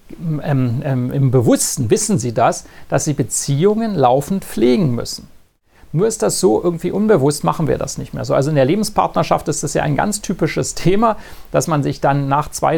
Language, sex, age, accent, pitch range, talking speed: German, male, 40-59, German, 135-180 Hz, 195 wpm